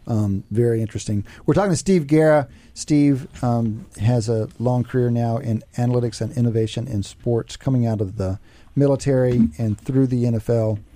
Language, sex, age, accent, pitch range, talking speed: English, male, 40-59, American, 110-145 Hz, 165 wpm